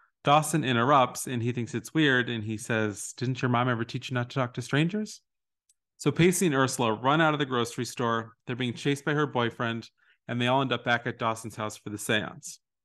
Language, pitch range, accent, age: English, 120-145 Hz, American, 30-49